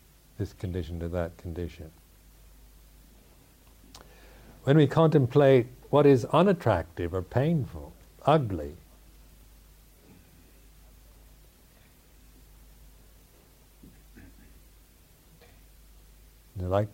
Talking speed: 55 wpm